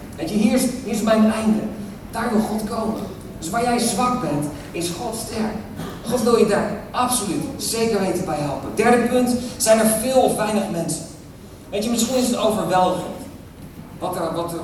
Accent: Dutch